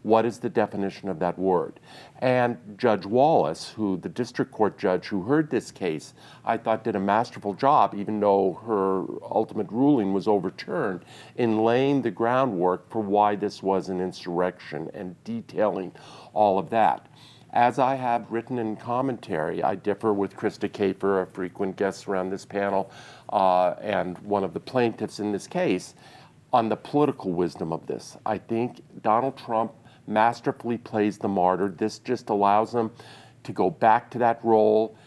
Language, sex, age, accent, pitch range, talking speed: English, male, 50-69, American, 100-120 Hz, 165 wpm